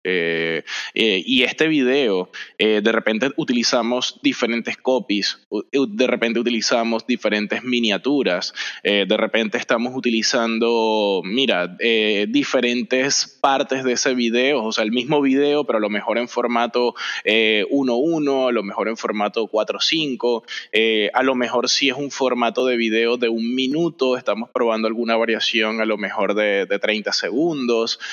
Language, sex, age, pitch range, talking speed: Spanish, male, 20-39, 110-140 Hz, 150 wpm